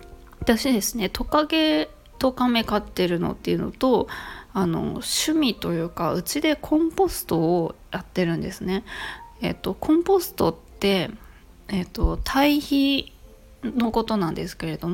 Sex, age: female, 20-39